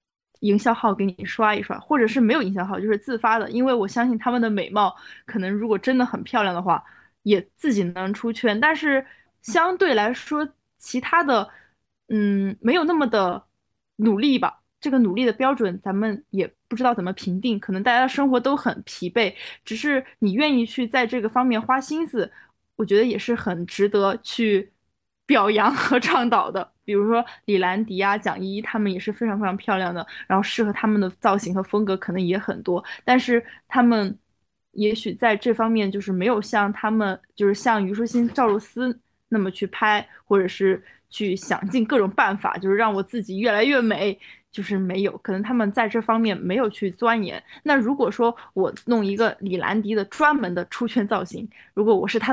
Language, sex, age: Chinese, female, 20-39